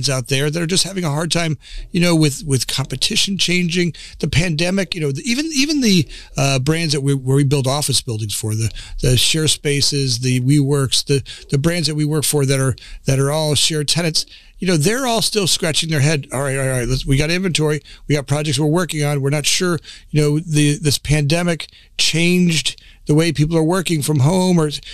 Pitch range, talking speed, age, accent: 140-170 Hz, 225 wpm, 40-59, American